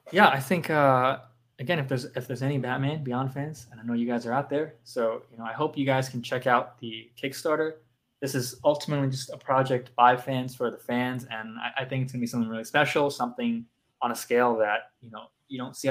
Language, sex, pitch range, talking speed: English, male, 120-140 Hz, 240 wpm